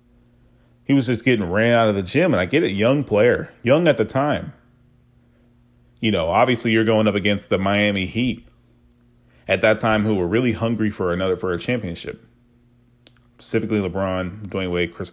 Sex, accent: male, American